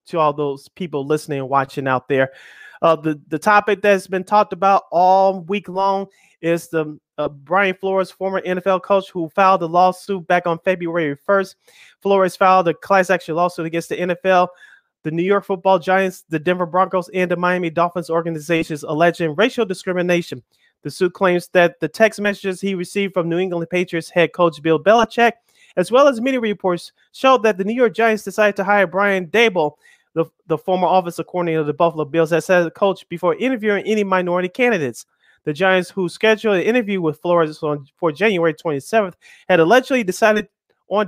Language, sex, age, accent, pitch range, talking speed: English, male, 30-49, American, 165-200 Hz, 190 wpm